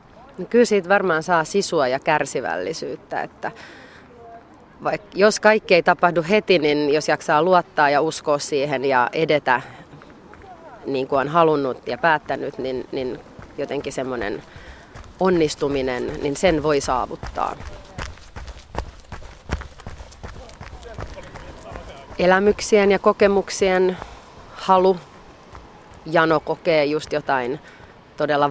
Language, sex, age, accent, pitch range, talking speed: Finnish, female, 30-49, native, 140-175 Hz, 100 wpm